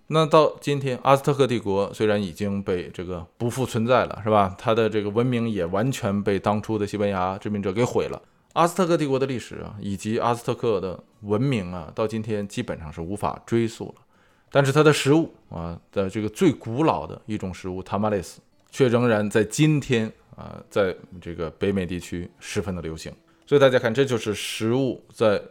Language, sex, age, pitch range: Chinese, male, 20-39, 100-125 Hz